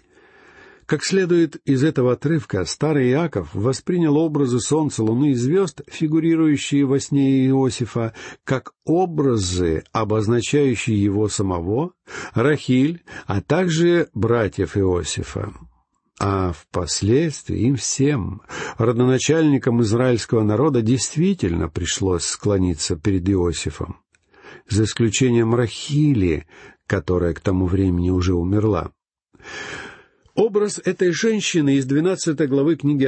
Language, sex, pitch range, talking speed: Russian, male, 100-155 Hz, 100 wpm